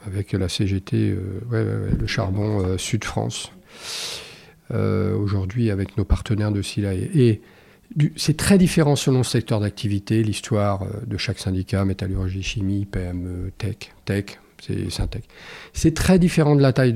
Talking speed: 155 wpm